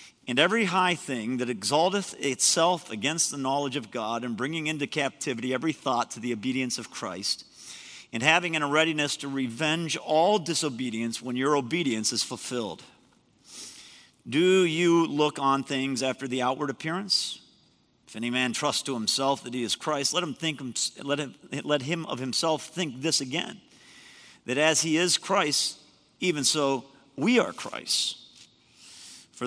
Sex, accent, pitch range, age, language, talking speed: male, American, 125-160 Hz, 50-69, English, 160 wpm